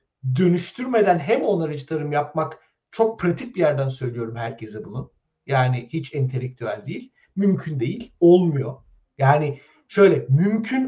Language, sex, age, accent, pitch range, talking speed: Turkish, male, 60-79, native, 140-190 Hz, 120 wpm